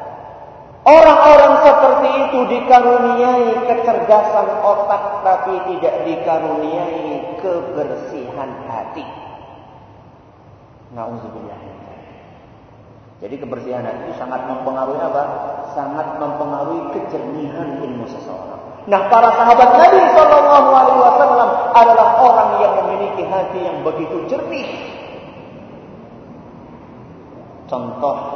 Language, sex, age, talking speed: Malay, male, 40-59, 75 wpm